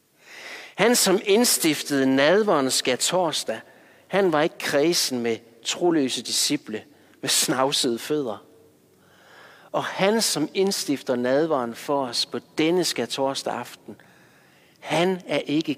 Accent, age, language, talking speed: native, 60-79, Danish, 110 wpm